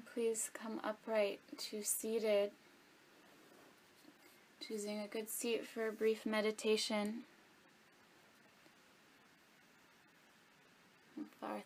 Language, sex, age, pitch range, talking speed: English, female, 20-39, 185-220 Hz, 70 wpm